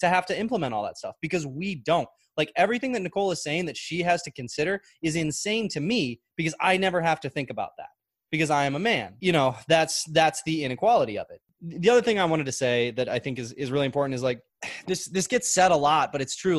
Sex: male